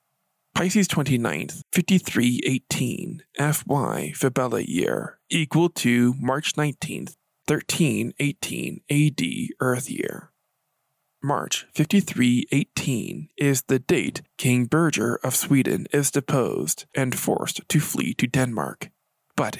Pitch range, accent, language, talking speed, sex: 130-165 Hz, American, English, 100 wpm, male